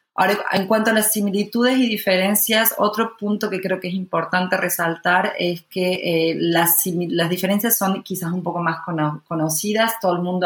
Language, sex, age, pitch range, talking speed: Spanish, female, 30-49, 155-180 Hz, 180 wpm